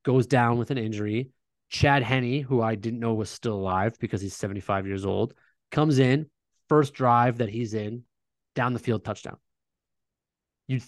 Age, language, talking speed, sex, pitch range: 20-39, English, 170 wpm, male, 110-140 Hz